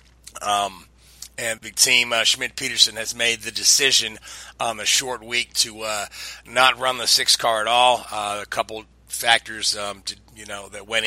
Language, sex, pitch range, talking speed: English, male, 105-120 Hz, 190 wpm